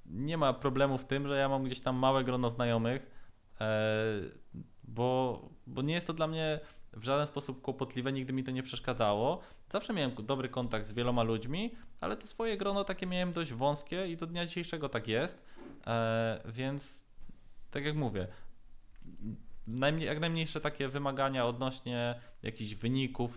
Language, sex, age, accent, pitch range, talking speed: Polish, male, 20-39, native, 110-130 Hz, 155 wpm